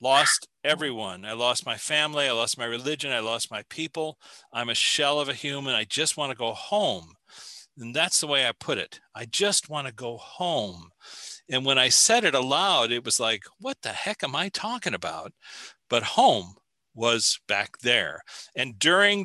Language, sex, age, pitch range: English, male, 40-59, 120-155 Hz